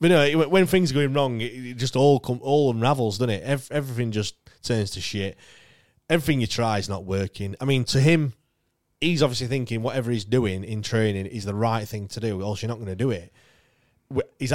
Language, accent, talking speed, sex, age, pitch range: English, British, 215 wpm, male, 20-39, 105-135 Hz